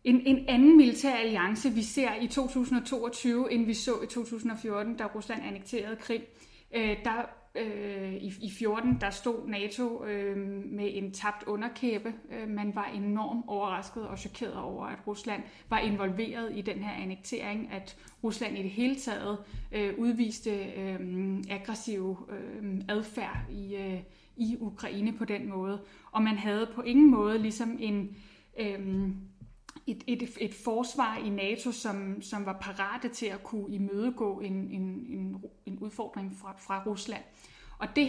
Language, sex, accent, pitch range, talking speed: Danish, female, native, 200-235 Hz, 160 wpm